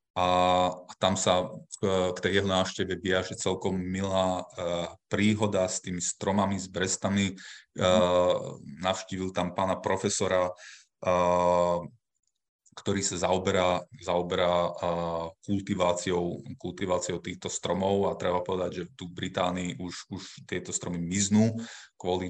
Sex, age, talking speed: male, 20-39, 110 wpm